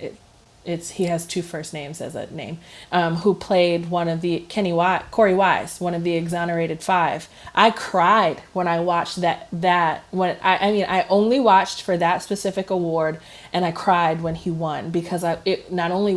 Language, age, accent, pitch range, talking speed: English, 20-39, American, 165-185 Hz, 195 wpm